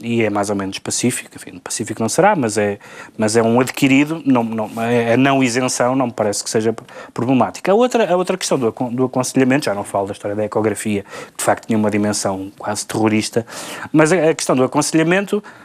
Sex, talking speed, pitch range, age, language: male, 215 wpm, 115-165 Hz, 20-39, Portuguese